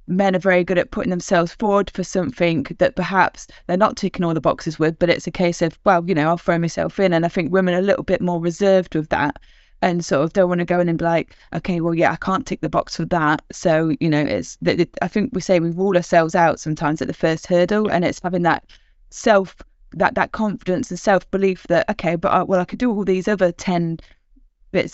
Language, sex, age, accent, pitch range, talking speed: English, female, 20-39, British, 170-190 Hz, 255 wpm